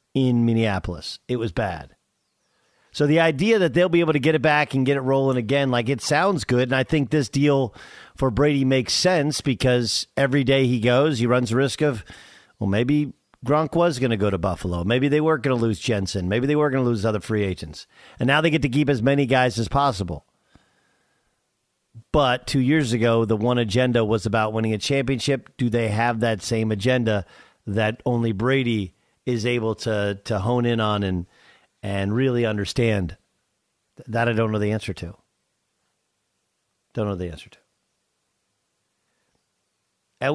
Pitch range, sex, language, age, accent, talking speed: 110-145 Hz, male, English, 50-69, American, 185 wpm